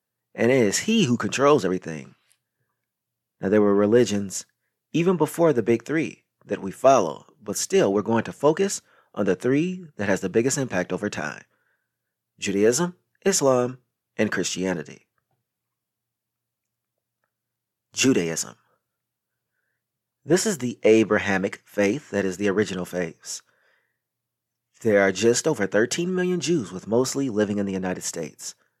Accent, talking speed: American, 135 wpm